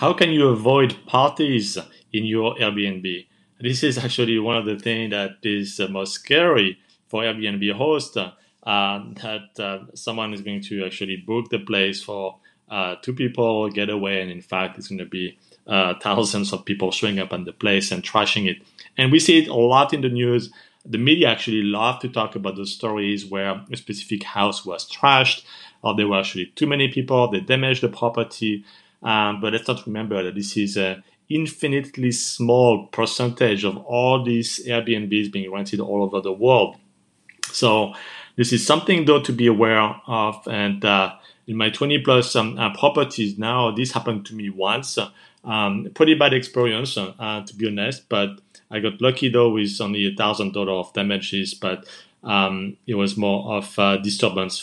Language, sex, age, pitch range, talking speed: English, male, 30-49, 100-120 Hz, 180 wpm